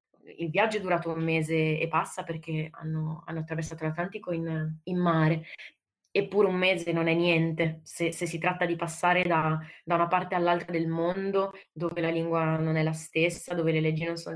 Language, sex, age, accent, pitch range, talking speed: Italian, female, 20-39, native, 160-175 Hz, 195 wpm